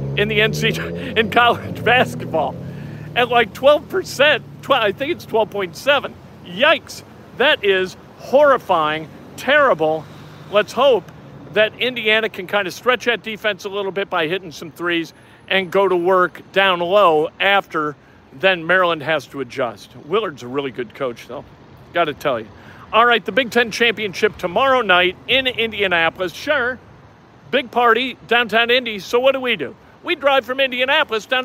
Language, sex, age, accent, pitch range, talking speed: English, male, 50-69, American, 170-240 Hz, 160 wpm